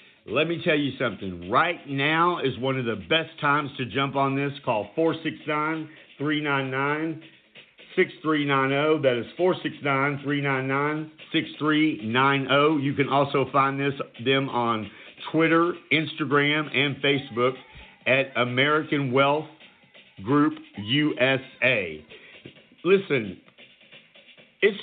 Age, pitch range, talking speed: 50-69, 125-150 Hz, 95 wpm